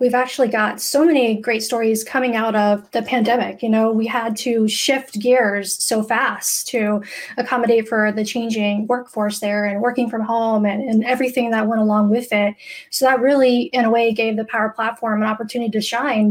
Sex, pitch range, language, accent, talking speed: female, 215-240 Hz, English, American, 200 wpm